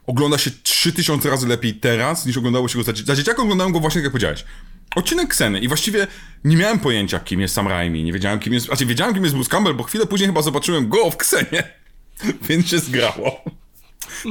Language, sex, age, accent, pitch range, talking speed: Polish, male, 30-49, native, 120-180 Hz, 215 wpm